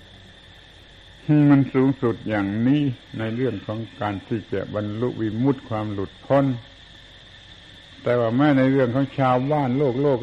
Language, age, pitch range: Thai, 70-89, 105-130 Hz